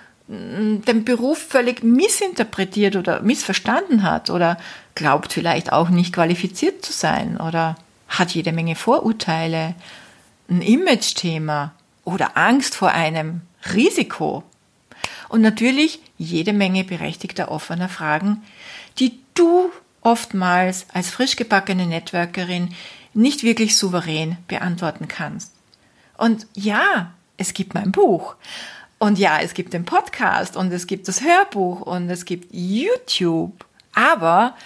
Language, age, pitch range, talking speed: German, 50-69, 180-255 Hz, 120 wpm